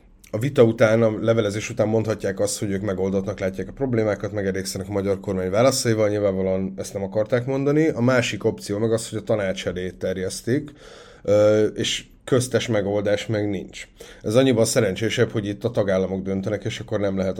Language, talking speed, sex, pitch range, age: Hungarian, 170 wpm, male, 95-110 Hz, 30-49